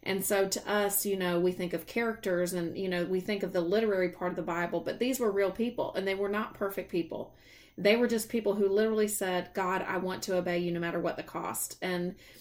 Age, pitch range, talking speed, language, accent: 30-49, 180-200 Hz, 250 wpm, English, American